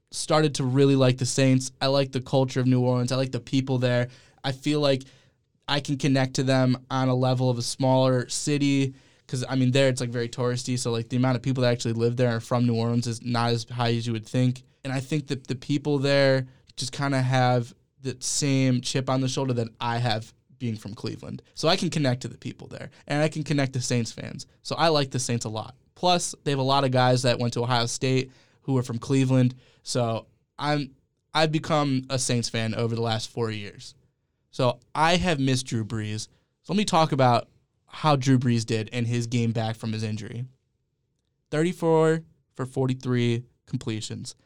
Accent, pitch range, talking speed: American, 120-140 Hz, 220 wpm